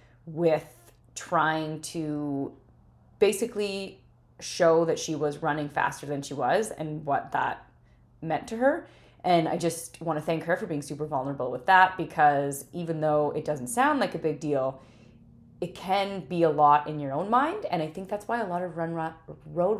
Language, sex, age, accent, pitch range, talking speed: English, female, 30-49, American, 150-190 Hz, 185 wpm